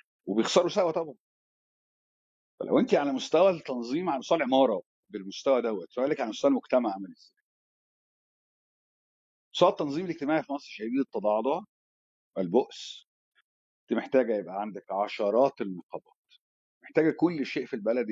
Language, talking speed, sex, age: Arabic, 125 wpm, male, 50-69